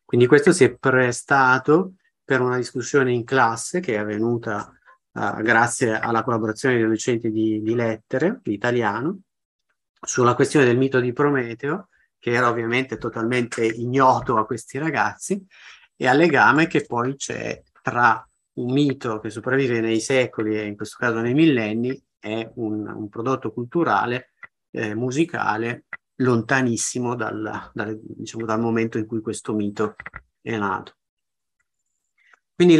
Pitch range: 115-145 Hz